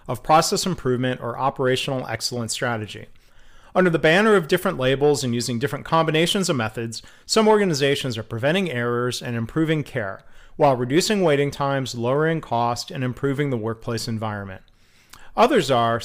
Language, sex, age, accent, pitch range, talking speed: English, male, 40-59, American, 120-165 Hz, 150 wpm